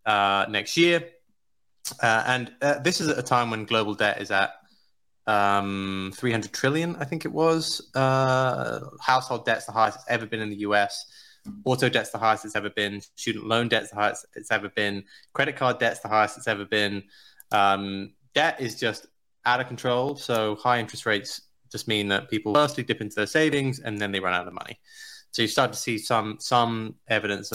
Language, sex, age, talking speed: English, male, 20-39, 200 wpm